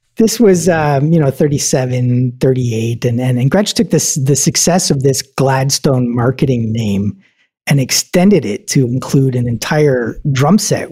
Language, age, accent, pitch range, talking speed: English, 40-59, American, 115-140 Hz, 160 wpm